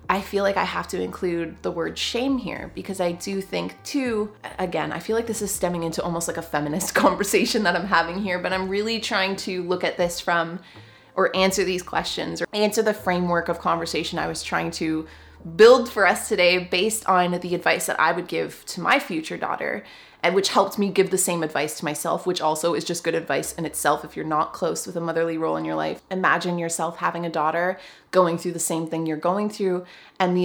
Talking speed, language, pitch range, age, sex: 225 wpm, English, 170-210 Hz, 20-39, female